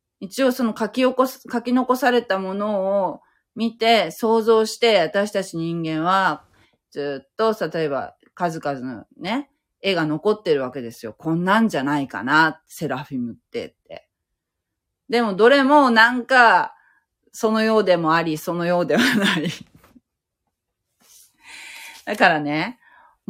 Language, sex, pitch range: Japanese, female, 150-235 Hz